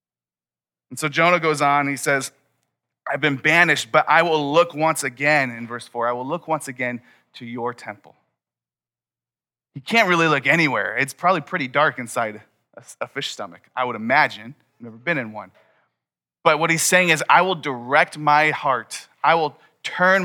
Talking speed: 180 wpm